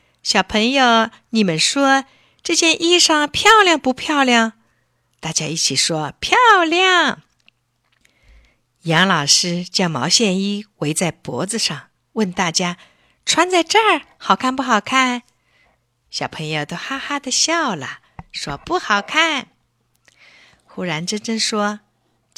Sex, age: female, 50-69